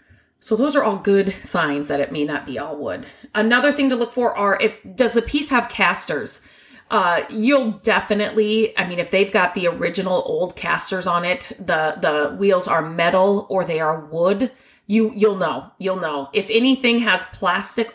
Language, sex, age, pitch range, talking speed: English, female, 30-49, 175-215 Hz, 190 wpm